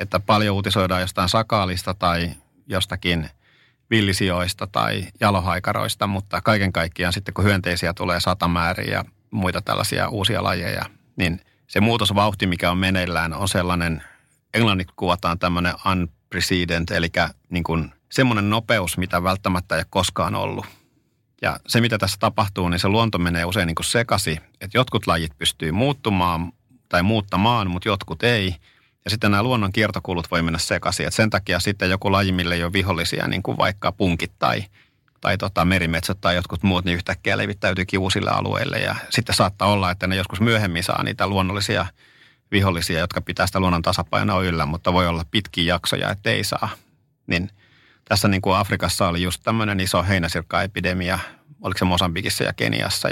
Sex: male